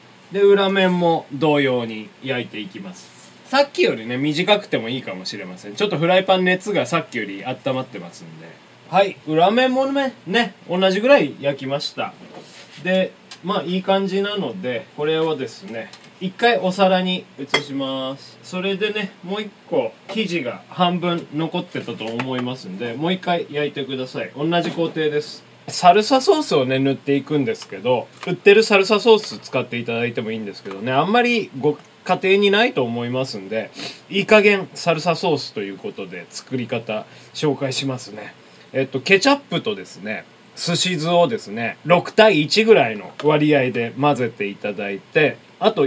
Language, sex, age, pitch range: Japanese, male, 20-39, 130-190 Hz